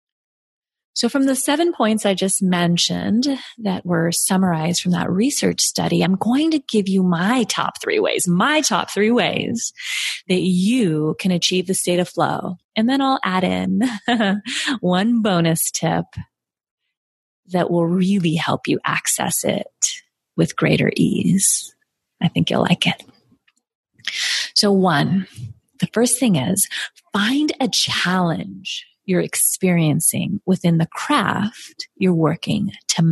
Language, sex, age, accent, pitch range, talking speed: English, female, 30-49, American, 175-245 Hz, 140 wpm